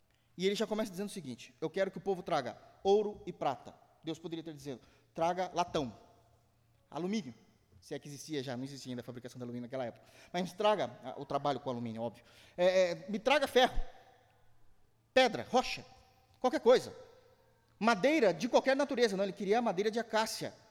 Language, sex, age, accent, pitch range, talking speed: Portuguese, male, 20-39, Brazilian, 140-220 Hz, 185 wpm